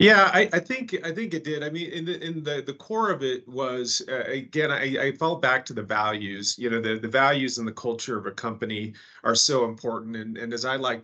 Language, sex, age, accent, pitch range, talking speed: English, male, 40-59, American, 110-130 Hz, 255 wpm